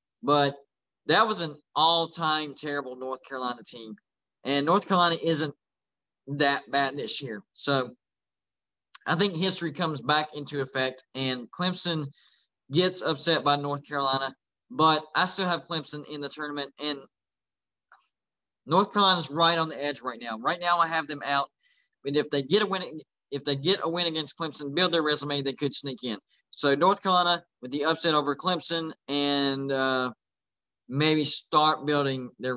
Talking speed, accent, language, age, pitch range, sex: 165 wpm, American, English, 20-39, 135-165 Hz, male